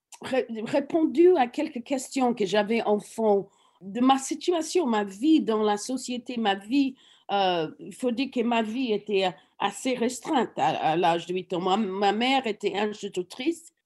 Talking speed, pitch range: 180 wpm, 205-280 Hz